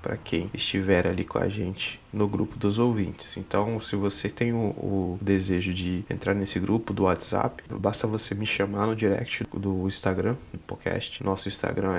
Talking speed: 180 wpm